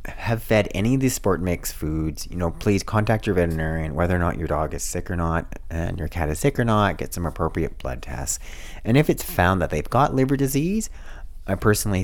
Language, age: English, 30-49